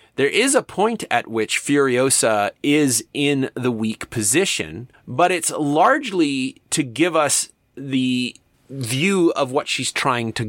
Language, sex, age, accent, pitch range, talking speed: English, male, 30-49, American, 110-145 Hz, 145 wpm